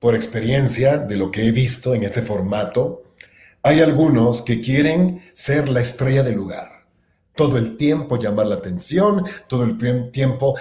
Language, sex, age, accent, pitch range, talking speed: Spanish, male, 40-59, Mexican, 115-150 Hz, 160 wpm